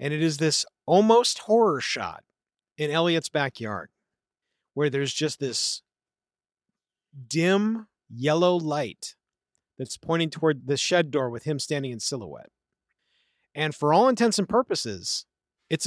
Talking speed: 130 wpm